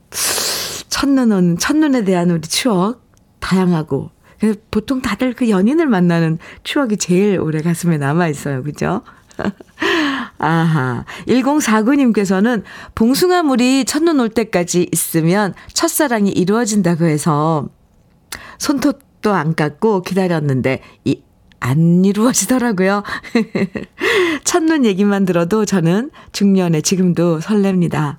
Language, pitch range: Korean, 170-245 Hz